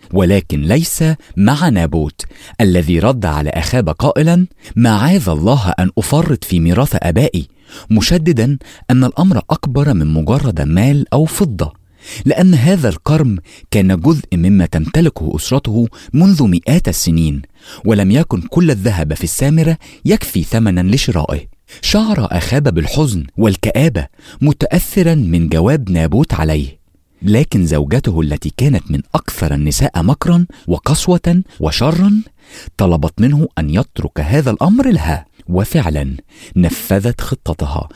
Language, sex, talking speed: English, male, 120 wpm